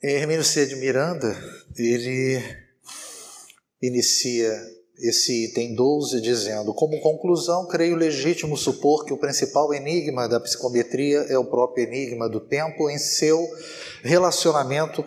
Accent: Brazilian